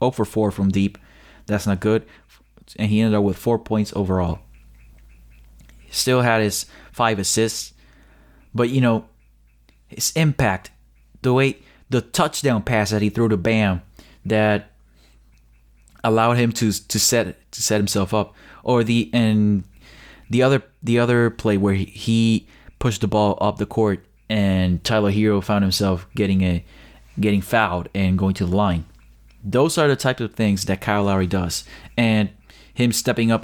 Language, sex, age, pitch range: English, male, 20-39, 95-115 Hz